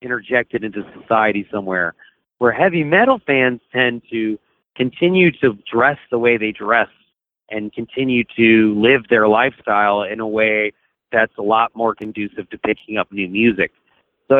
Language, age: English, 30-49